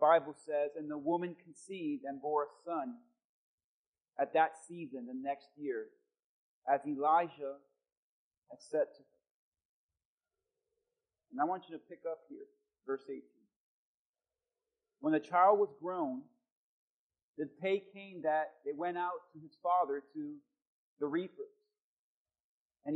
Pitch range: 160-240 Hz